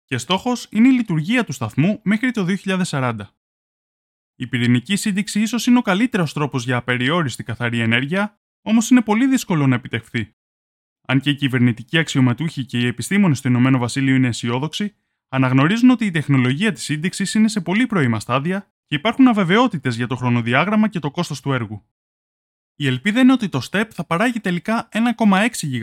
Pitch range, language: 125-205 Hz, Greek